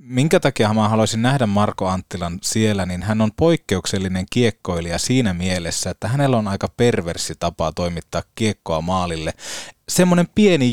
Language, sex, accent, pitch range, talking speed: Finnish, male, native, 95-125 Hz, 145 wpm